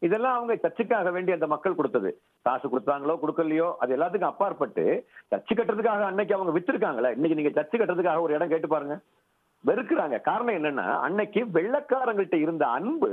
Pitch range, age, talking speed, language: 145-200 Hz, 50-69, 145 wpm, Tamil